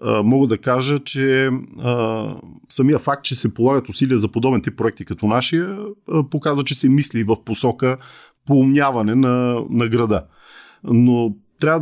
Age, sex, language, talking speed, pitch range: 40-59, male, Bulgarian, 140 wpm, 105-135 Hz